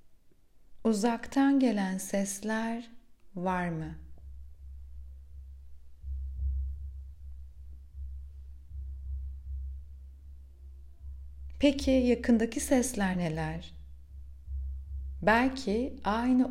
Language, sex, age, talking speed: Turkish, female, 30-49, 40 wpm